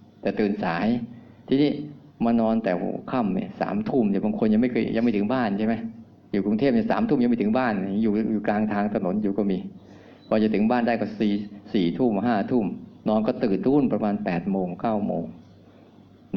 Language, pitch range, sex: Thai, 105-135 Hz, male